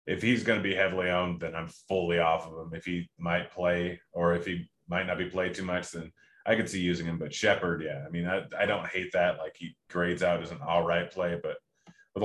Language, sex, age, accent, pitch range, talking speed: English, male, 30-49, American, 90-115 Hz, 255 wpm